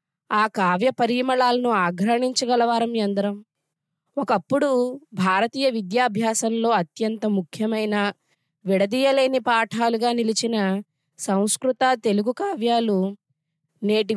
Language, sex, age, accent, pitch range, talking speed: Telugu, female, 20-39, native, 180-230 Hz, 70 wpm